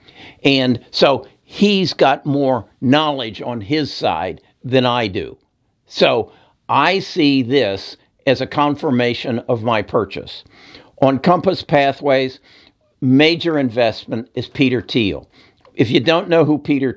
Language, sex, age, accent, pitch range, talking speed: English, male, 60-79, American, 110-140 Hz, 125 wpm